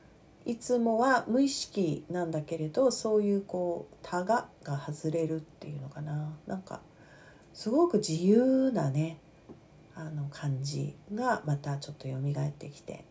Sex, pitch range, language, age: female, 155-190 Hz, Japanese, 40-59